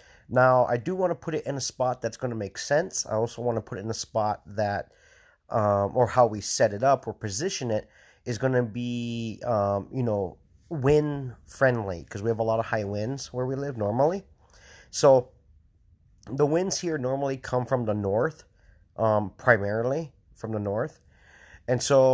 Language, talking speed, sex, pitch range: English, 195 wpm, male, 105-130 Hz